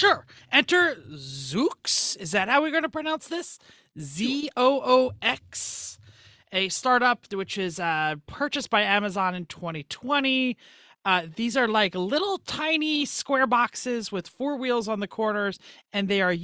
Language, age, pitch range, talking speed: English, 30-49, 170-250 Hz, 140 wpm